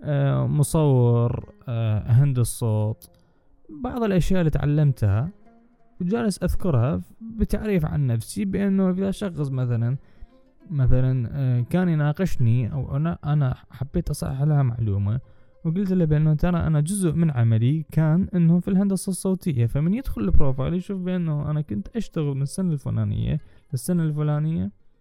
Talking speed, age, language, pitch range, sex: 130 wpm, 20-39, Arabic, 115-170 Hz, male